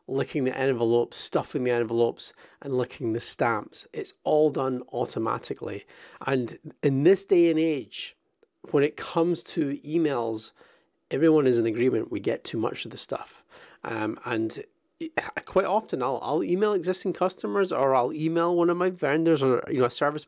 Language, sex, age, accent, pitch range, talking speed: English, male, 30-49, British, 130-175 Hz, 170 wpm